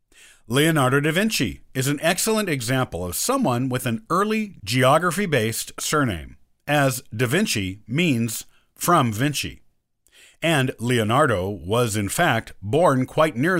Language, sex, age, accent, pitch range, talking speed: English, male, 50-69, American, 105-150 Hz, 125 wpm